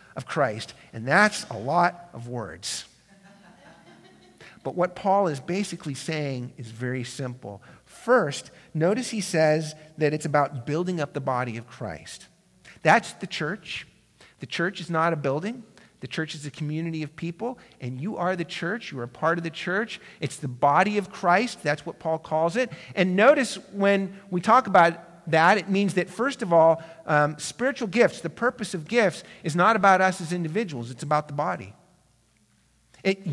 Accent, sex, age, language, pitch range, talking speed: American, male, 50-69, English, 150-195 Hz, 180 wpm